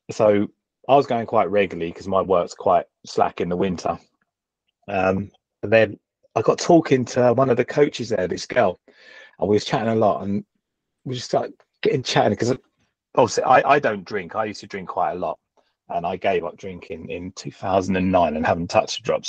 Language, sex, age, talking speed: English, male, 30-49, 200 wpm